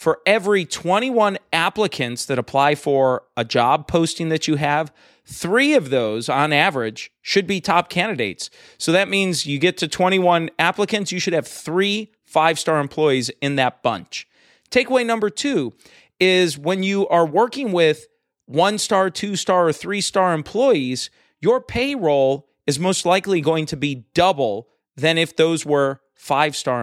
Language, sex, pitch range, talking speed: English, male, 145-200 Hz, 150 wpm